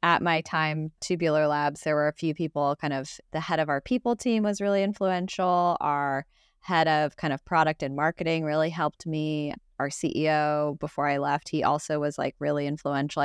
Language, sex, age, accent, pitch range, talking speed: English, female, 20-39, American, 145-170 Hz, 195 wpm